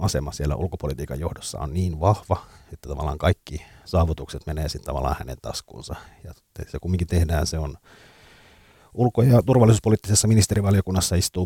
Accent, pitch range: native, 80-100 Hz